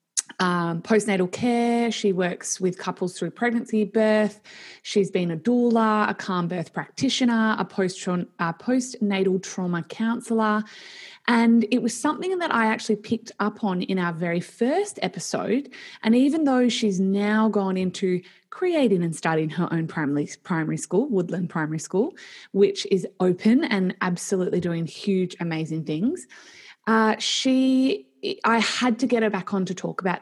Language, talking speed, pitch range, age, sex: English, 155 wpm, 180-225 Hz, 20-39, female